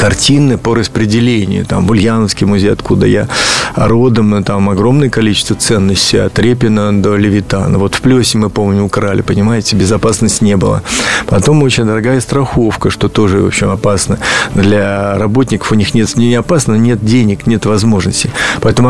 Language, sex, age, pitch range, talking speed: Russian, male, 50-69, 105-125 Hz, 150 wpm